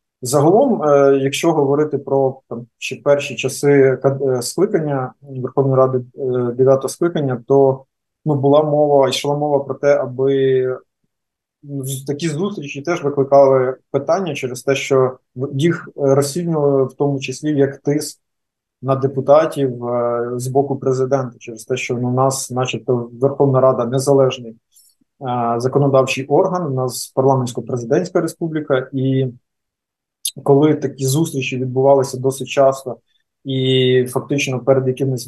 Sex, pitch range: male, 130-140 Hz